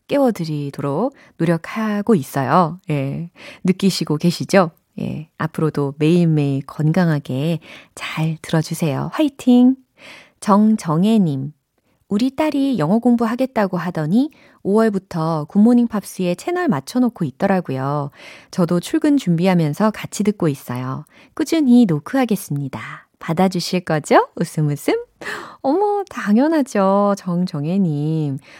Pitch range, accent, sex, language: 150-215 Hz, native, female, Korean